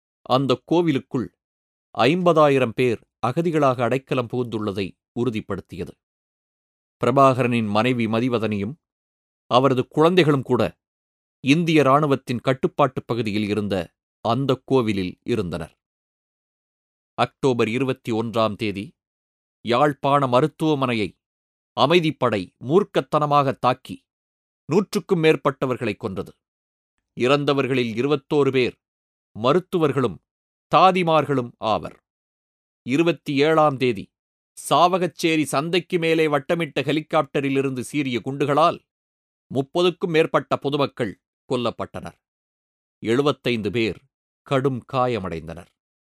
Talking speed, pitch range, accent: 75 wpm, 105-150 Hz, native